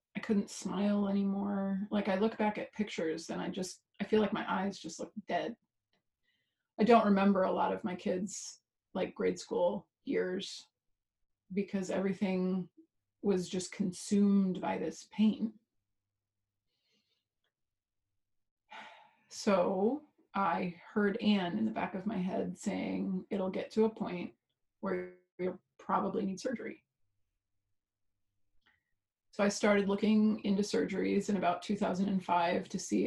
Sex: female